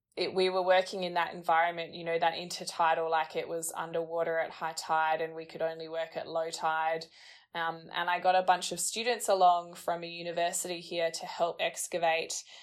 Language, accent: English, Australian